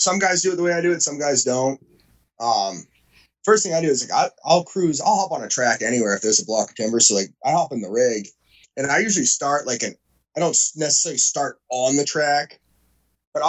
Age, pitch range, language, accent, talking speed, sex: 20-39, 120-150 Hz, English, American, 245 wpm, male